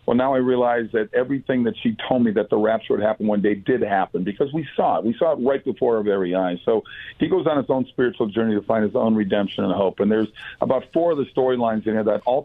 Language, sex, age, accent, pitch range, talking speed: English, male, 50-69, American, 110-130 Hz, 275 wpm